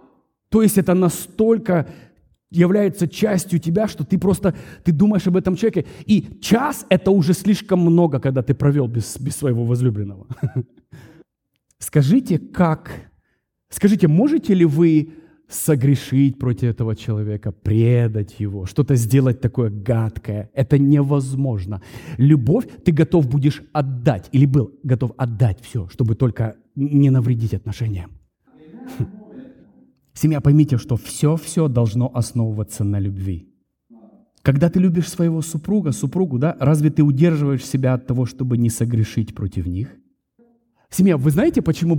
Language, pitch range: English, 125-180 Hz